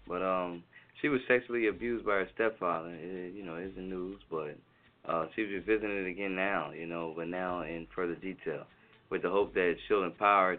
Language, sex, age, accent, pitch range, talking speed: English, male, 20-39, American, 85-100 Hz, 200 wpm